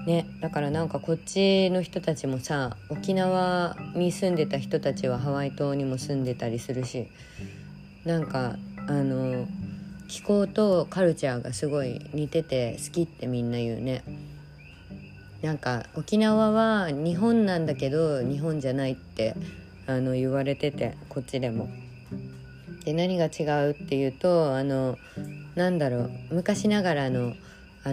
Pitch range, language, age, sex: 125-165 Hz, Japanese, 20-39, female